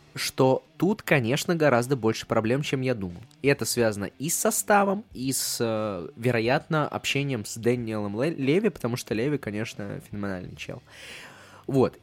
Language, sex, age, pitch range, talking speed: Russian, male, 20-39, 110-145 Hz, 150 wpm